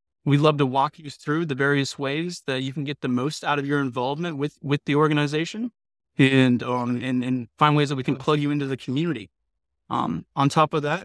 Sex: male